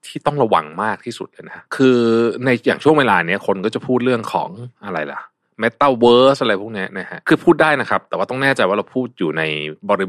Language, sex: Thai, male